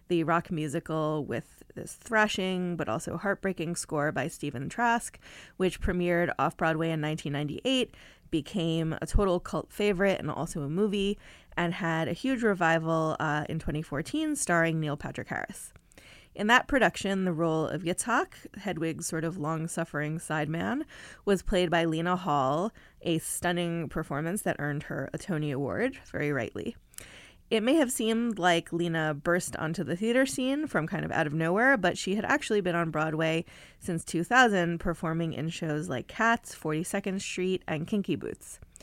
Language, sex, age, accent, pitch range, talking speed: English, female, 20-39, American, 155-200 Hz, 160 wpm